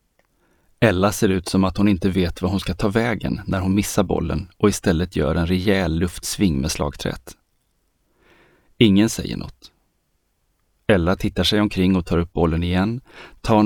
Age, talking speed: 30-49, 165 wpm